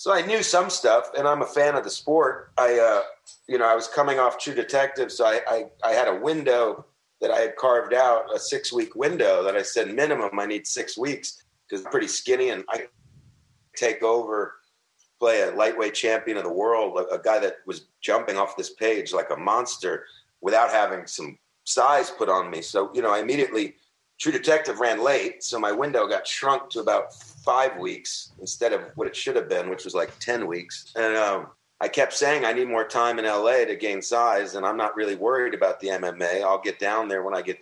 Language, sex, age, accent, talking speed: English, male, 40-59, American, 220 wpm